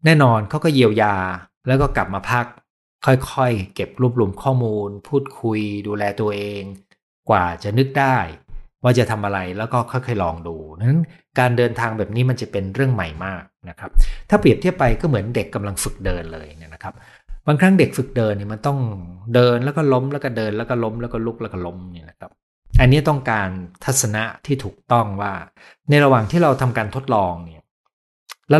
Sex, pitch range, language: male, 95-130 Hz, Thai